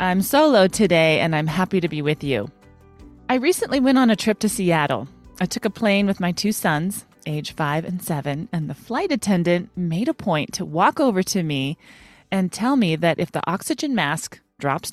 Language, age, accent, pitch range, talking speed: English, 30-49, American, 160-210 Hz, 205 wpm